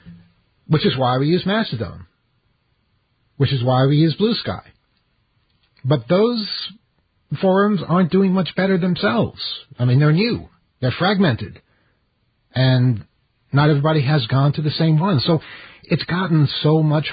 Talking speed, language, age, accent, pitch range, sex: 145 wpm, English, 50-69, American, 120-155 Hz, male